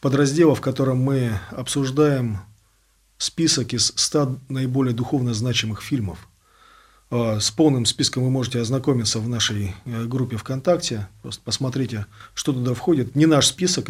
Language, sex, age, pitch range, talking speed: Russian, male, 40-59, 115-140 Hz, 130 wpm